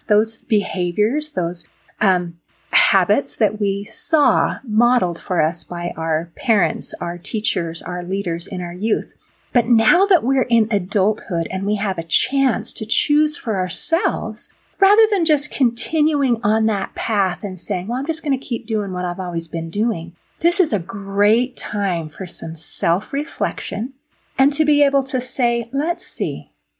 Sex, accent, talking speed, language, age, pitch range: female, American, 165 wpm, English, 40-59, 185-275 Hz